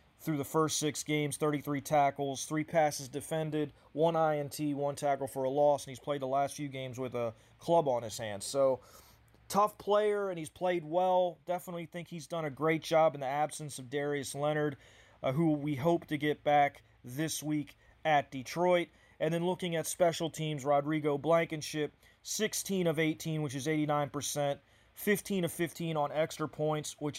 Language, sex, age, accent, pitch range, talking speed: English, male, 30-49, American, 140-170 Hz, 180 wpm